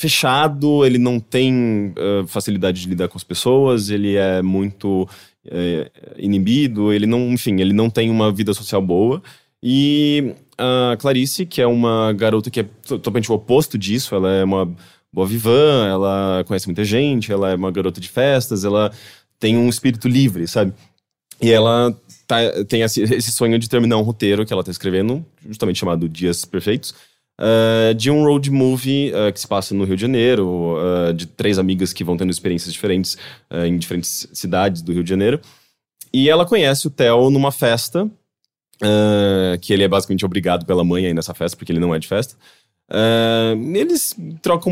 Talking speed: 175 wpm